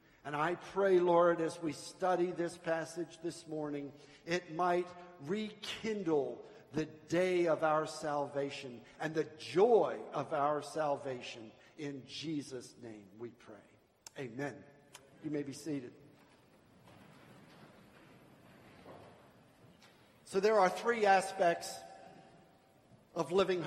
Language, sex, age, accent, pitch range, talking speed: English, male, 50-69, American, 160-200 Hz, 105 wpm